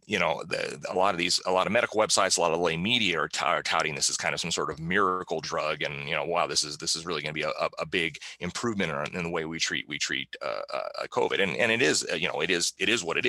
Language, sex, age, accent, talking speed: Italian, male, 30-49, American, 310 wpm